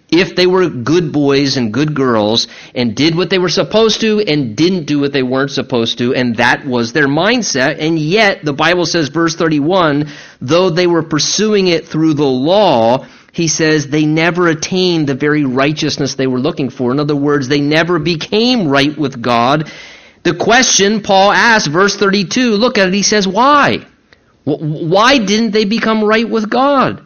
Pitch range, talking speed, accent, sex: 145-205 Hz, 185 wpm, American, male